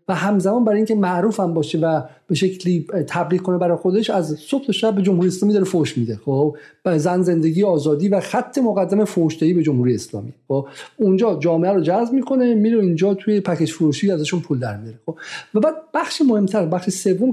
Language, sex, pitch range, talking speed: Persian, male, 165-215 Hz, 195 wpm